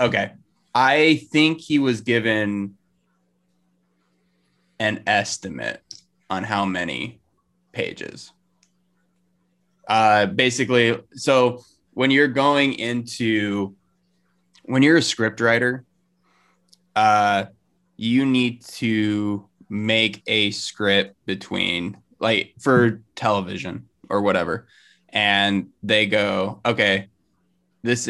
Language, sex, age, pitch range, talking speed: English, male, 20-39, 100-135 Hz, 90 wpm